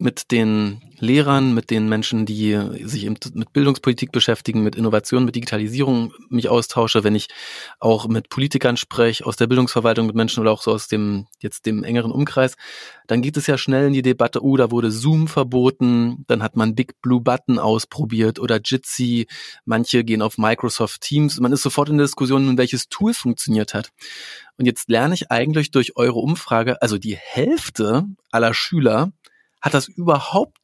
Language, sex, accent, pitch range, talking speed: German, male, German, 115-145 Hz, 175 wpm